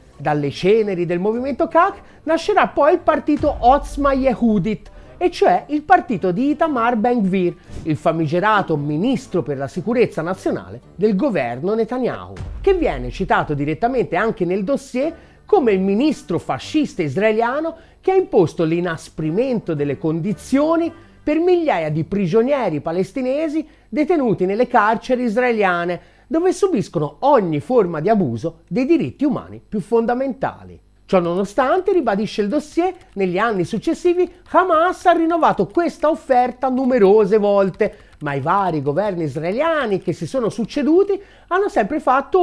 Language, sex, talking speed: Italian, male, 135 wpm